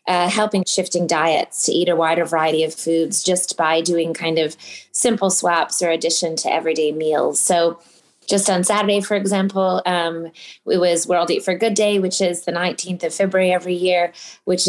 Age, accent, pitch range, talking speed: 20-39, American, 165-190 Hz, 190 wpm